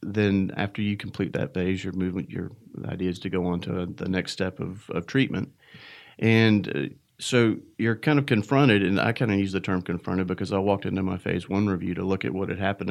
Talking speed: 230 wpm